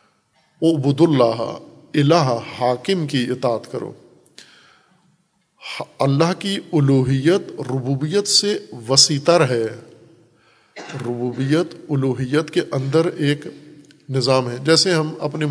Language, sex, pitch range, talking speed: Urdu, male, 130-155 Hz, 85 wpm